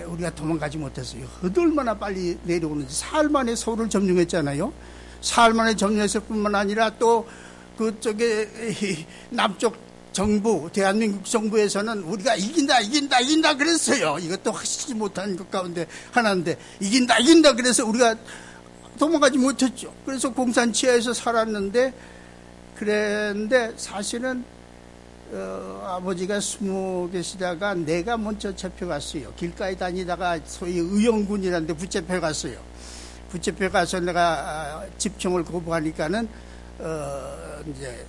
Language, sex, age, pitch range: Korean, male, 60-79, 145-225 Hz